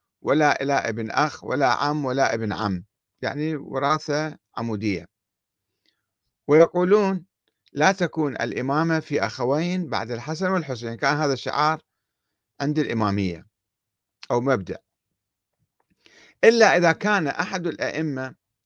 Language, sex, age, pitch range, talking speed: Arabic, male, 50-69, 120-165 Hz, 105 wpm